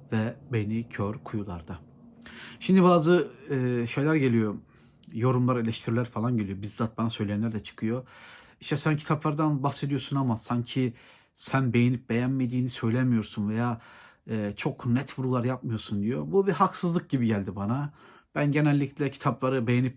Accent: native